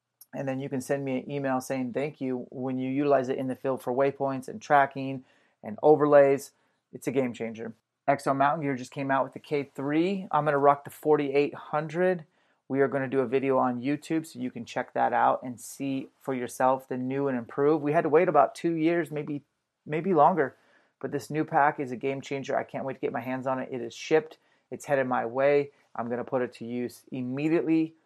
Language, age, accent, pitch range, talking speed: English, 30-49, American, 125-150 Hz, 235 wpm